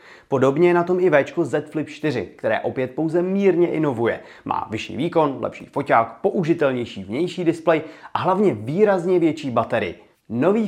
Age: 30-49